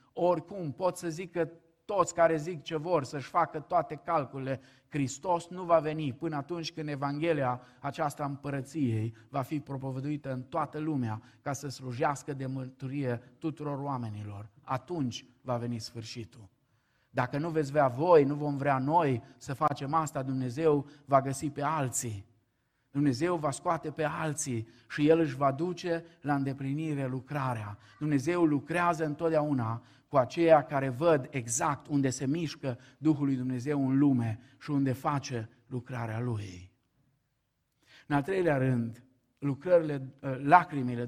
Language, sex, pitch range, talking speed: Romanian, male, 125-150 Hz, 145 wpm